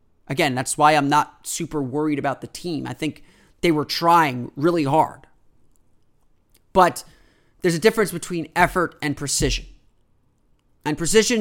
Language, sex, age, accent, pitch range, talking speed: English, male, 30-49, American, 150-185 Hz, 140 wpm